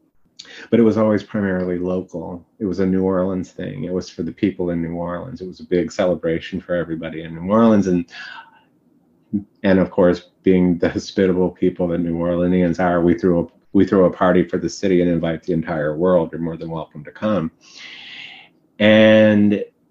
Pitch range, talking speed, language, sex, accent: 90-105 Hz, 195 wpm, English, male, American